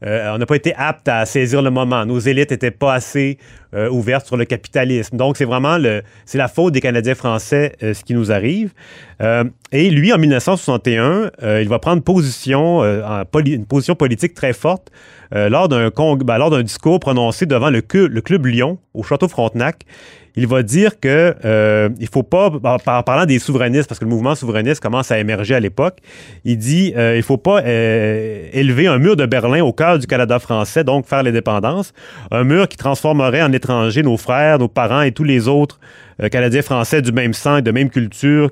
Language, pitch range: French, 115-145 Hz